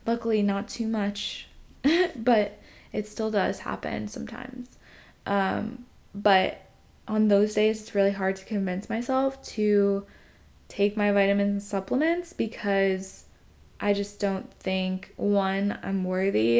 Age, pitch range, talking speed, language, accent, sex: 10-29, 200-225 Hz, 125 wpm, English, American, female